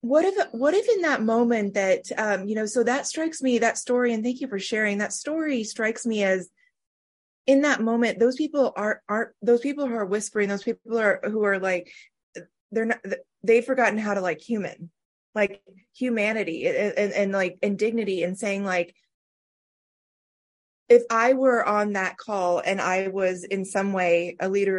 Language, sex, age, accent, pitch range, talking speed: English, female, 20-39, American, 185-235 Hz, 190 wpm